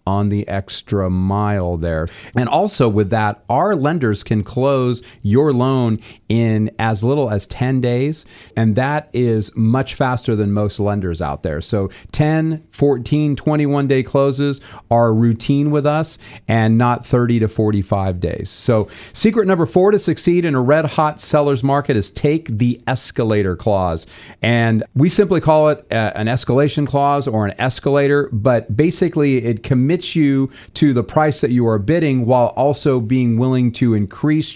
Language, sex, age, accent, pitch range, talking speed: English, male, 40-59, American, 105-140 Hz, 165 wpm